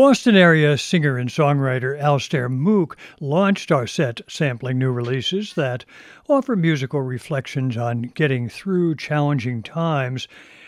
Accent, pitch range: American, 130-175 Hz